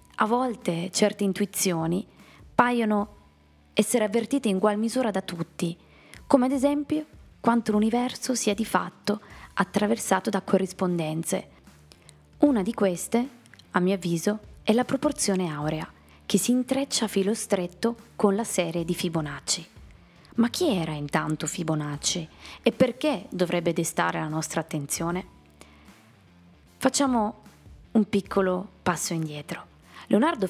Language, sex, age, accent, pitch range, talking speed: Italian, female, 20-39, native, 165-230 Hz, 120 wpm